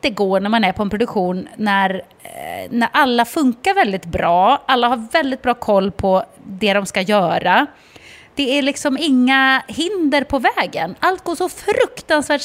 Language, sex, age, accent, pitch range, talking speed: English, female, 30-49, Swedish, 200-285 Hz, 170 wpm